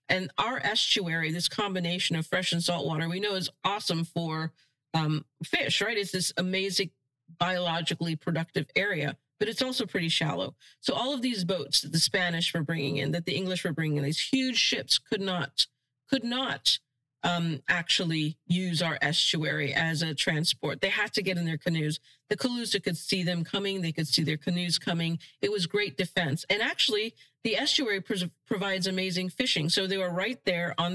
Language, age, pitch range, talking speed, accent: English, 40-59, 155-195 Hz, 190 wpm, American